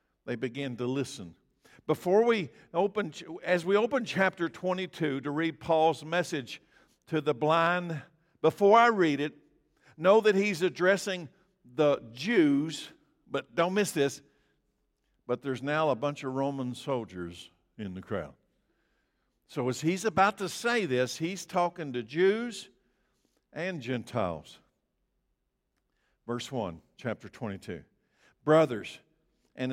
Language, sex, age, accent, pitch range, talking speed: English, male, 50-69, American, 130-185 Hz, 125 wpm